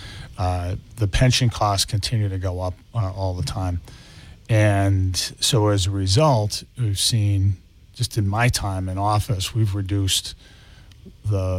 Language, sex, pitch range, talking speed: English, male, 95-110 Hz, 145 wpm